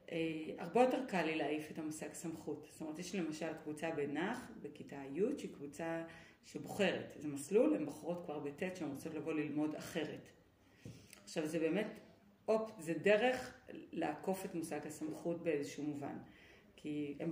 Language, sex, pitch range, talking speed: Hebrew, female, 150-185 Hz, 160 wpm